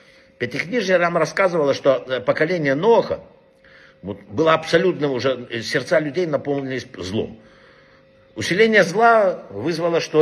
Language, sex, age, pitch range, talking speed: Russian, male, 60-79, 135-180 Hz, 100 wpm